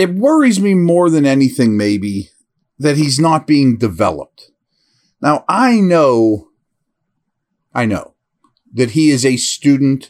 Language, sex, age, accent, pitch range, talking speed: English, male, 40-59, American, 105-155 Hz, 130 wpm